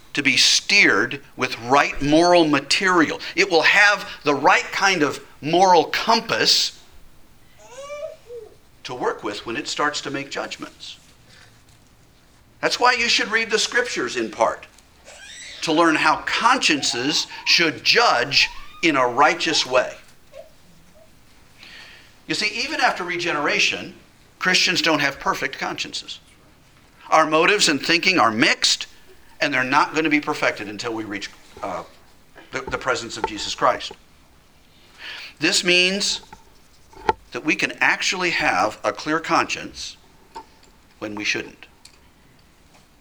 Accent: American